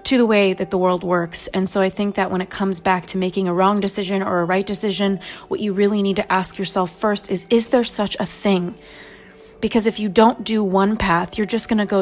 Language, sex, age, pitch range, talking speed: English, female, 20-39, 185-205 Hz, 255 wpm